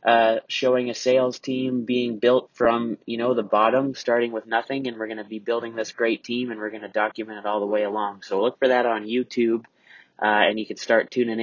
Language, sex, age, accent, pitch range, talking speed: English, male, 30-49, American, 110-130 Hz, 240 wpm